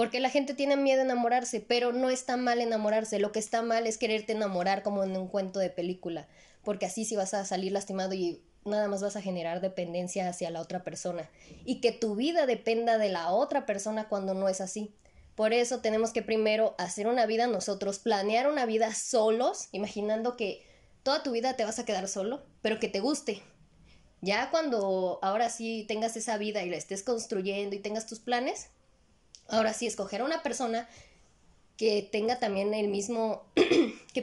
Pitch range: 200-240 Hz